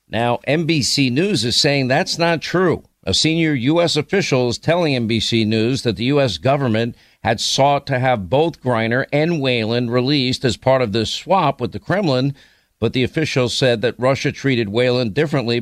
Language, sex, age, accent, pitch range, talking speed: English, male, 50-69, American, 115-135 Hz, 175 wpm